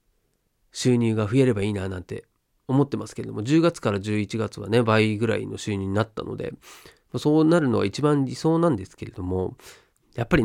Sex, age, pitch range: male, 40-59, 105-150 Hz